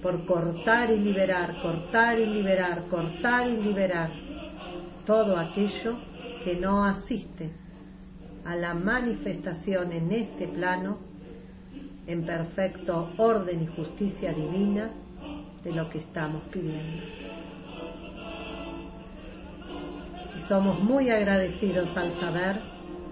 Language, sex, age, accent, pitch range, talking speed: Spanish, female, 40-59, American, 170-200 Hz, 100 wpm